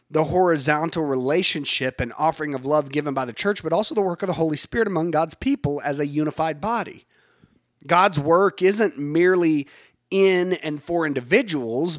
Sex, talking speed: male, 170 wpm